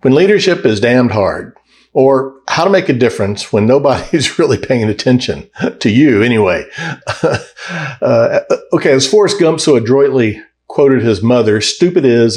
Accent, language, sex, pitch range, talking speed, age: American, English, male, 120-170 Hz, 150 wpm, 60-79